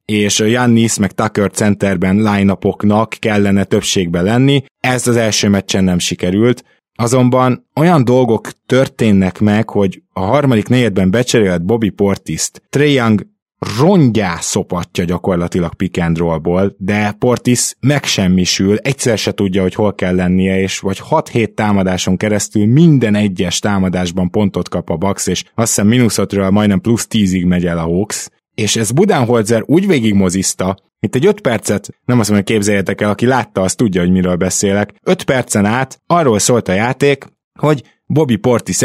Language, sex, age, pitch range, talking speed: Hungarian, male, 20-39, 95-125 Hz, 150 wpm